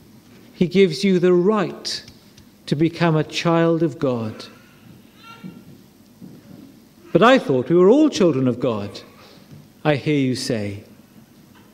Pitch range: 130-180 Hz